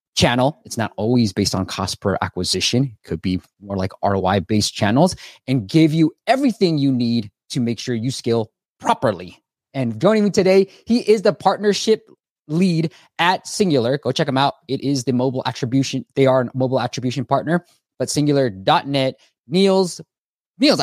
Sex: male